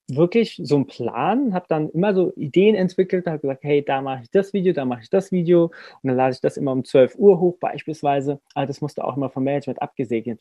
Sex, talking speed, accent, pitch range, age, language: male, 240 wpm, German, 130-155 Hz, 20-39, German